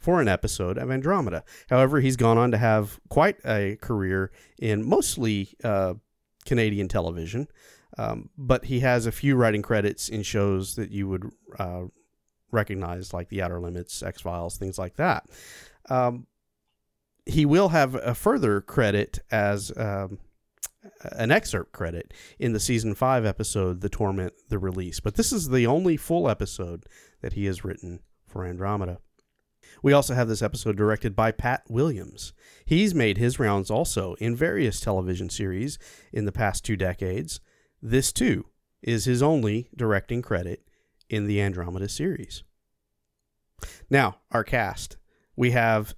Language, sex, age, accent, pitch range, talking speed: English, male, 40-59, American, 100-125 Hz, 150 wpm